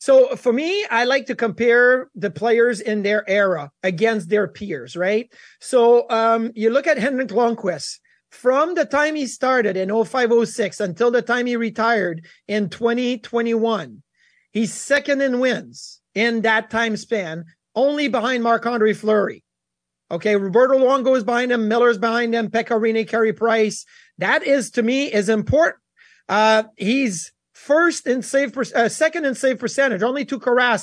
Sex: male